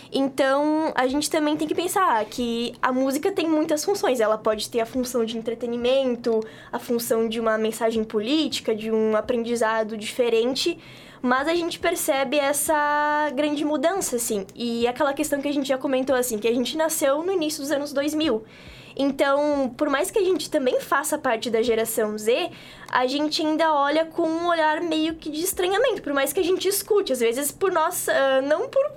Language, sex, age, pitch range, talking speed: Portuguese, female, 10-29, 245-325 Hz, 190 wpm